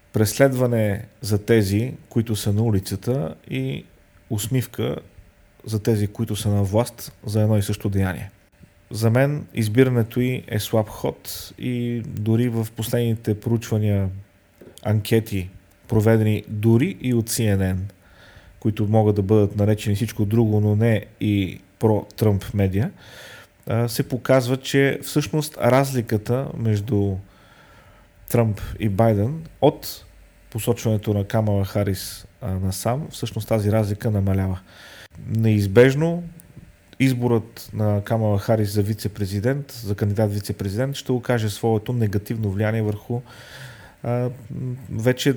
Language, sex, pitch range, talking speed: Bulgarian, male, 100-120 Hz, 115 wpm